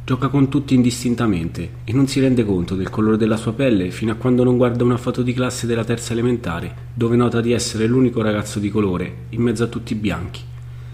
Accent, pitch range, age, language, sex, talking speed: native, 100-120 Hz, 30-49, Italian, male, 220 wpm